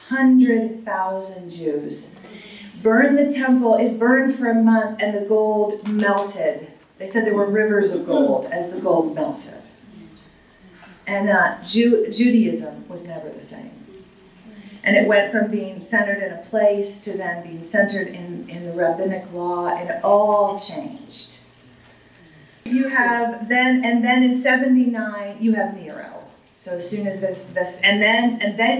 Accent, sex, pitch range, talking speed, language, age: American, female, 195-245 Hz, 150 wpm, English, 40-59